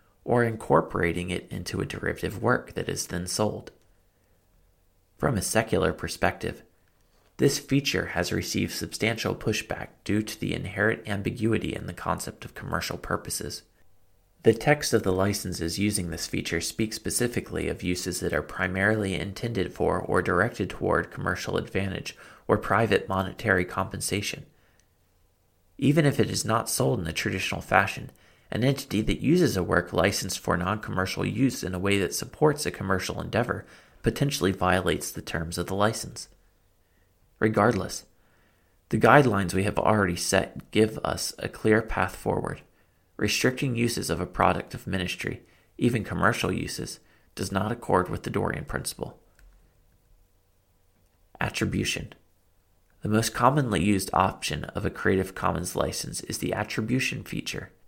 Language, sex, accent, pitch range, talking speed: English, male, American, 90-110 Hz, 145 wpm